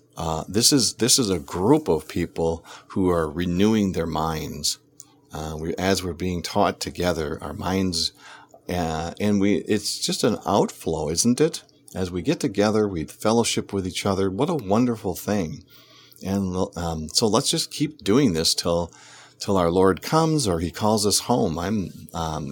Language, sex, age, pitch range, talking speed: English, male, 50-69, 85-120 Hz, 175 wpm